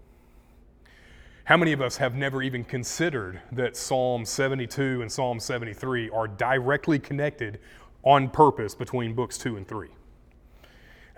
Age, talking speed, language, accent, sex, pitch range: 30-49, 135 wpm, English, American, male, 110-140 Hz